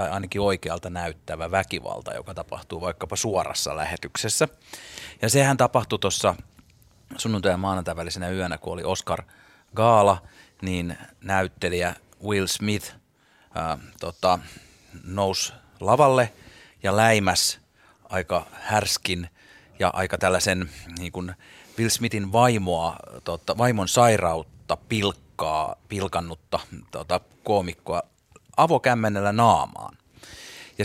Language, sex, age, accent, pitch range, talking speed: Finnish, male, 30-49, native, 90-120 Hz, 100 wpm